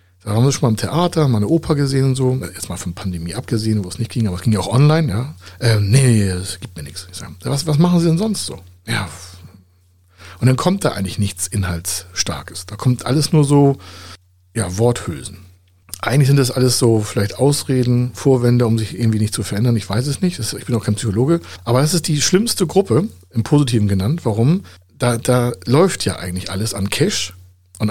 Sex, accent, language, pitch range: male, German, German, 95-140 Hz